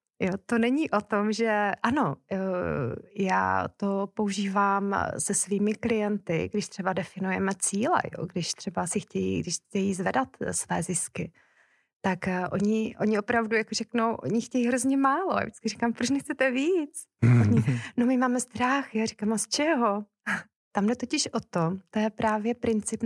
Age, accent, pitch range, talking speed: 30-49, native, 185-215 Hz, 165 wpm